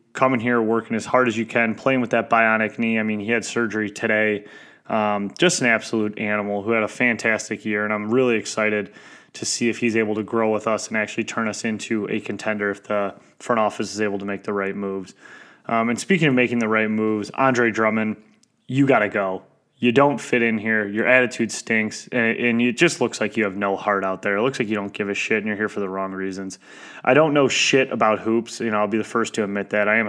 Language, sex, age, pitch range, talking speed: English, male, 20-39, 105-115 Hz, 250 wpm